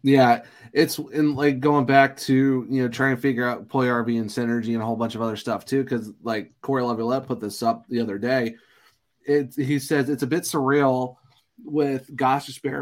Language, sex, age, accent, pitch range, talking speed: English, male, 30-49, American, 120-140 Hz, 210 wpm